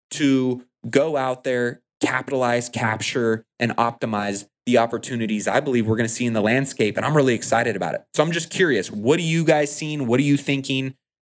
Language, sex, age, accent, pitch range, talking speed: English, male, 20-39, American, 110-130 Hz, 200 wpm